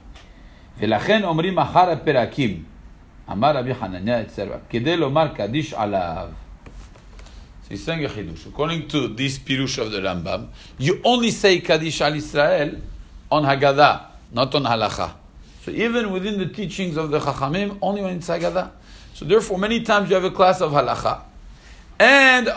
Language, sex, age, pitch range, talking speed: English, male, 50-69, 120-195 Hz, 105 wpm